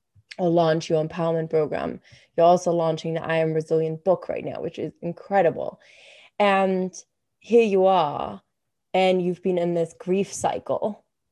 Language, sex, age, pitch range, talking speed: English, female, 20-39, 170-210 Hz, 155 wpm